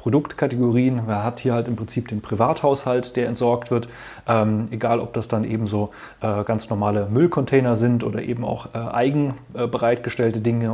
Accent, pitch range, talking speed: German, 115-130 Hz, 175 wpm